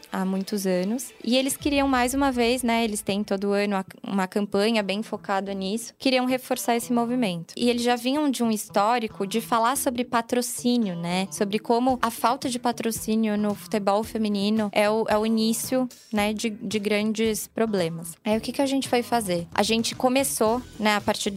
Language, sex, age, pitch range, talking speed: English, female, 20-39, 210-250 Hz, 190 wpm